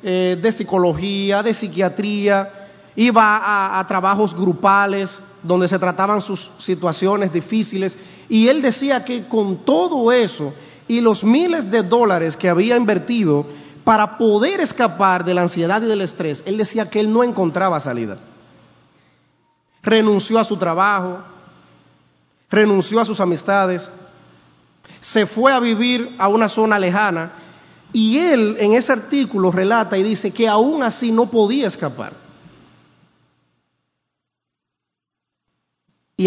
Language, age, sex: English, 30-49, male